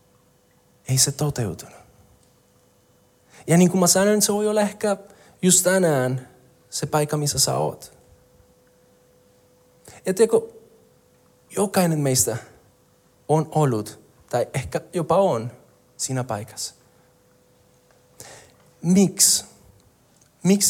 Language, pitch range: Finnish, 135-190 Hz